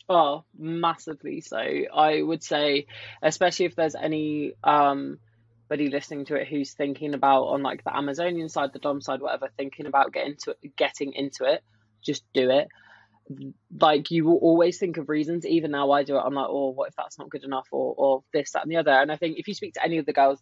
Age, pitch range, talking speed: 20-39, 135-160 Hz, 225 wpm